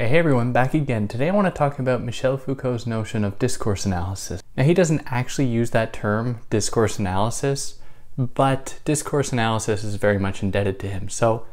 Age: 20-39